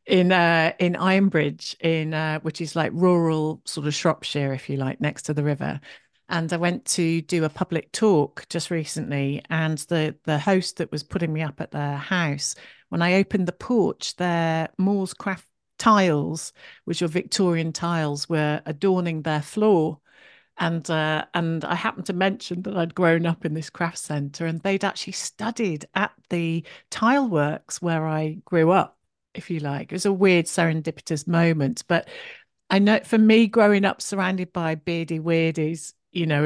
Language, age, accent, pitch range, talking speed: English, 50-69, British, 150-185 Hz, 175 wpm